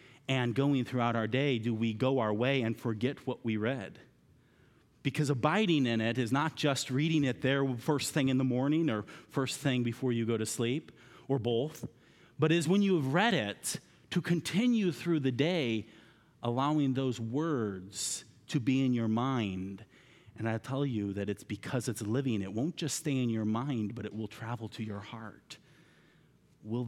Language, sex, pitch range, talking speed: English, male, 110-140 Hz, 190 wpm